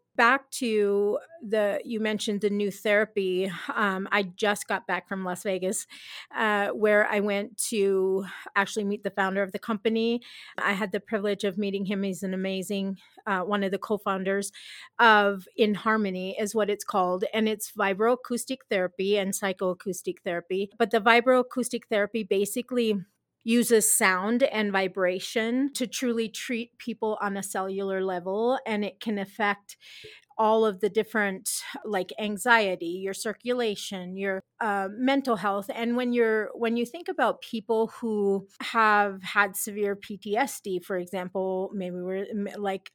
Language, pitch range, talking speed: English, 195-225 Hz, 150 wpm